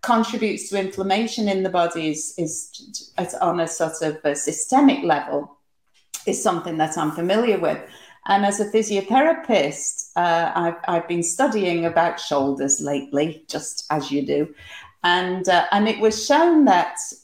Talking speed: 155 wpm